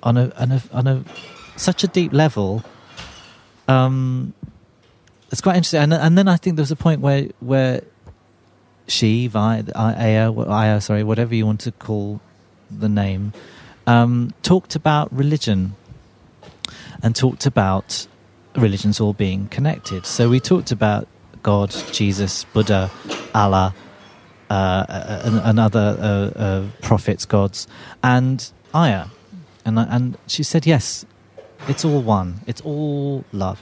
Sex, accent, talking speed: male, British, 140 wpm